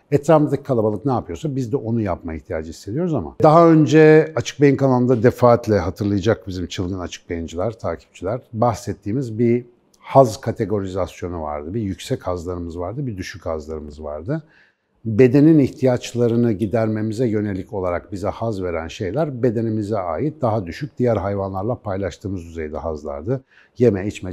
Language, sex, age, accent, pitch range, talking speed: Turkish, male, 60-79, native, 90-130 Hz, 140 wpm